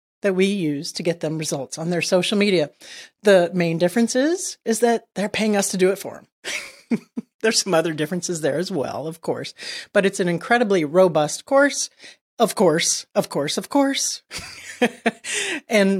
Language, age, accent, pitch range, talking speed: English, 40-59, American, 175-230 Hz, 175 wpm